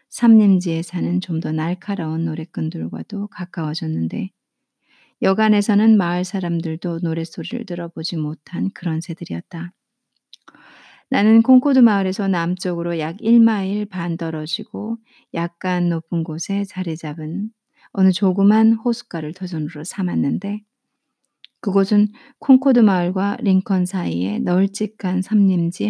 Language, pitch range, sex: Korean, 170-220 Hz, female